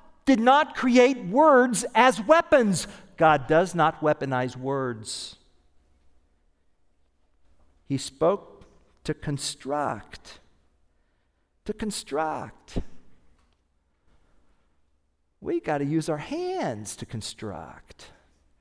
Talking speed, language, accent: 80 wpm, English, American